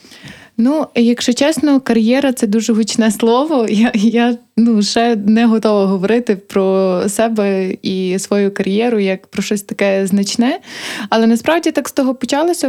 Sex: female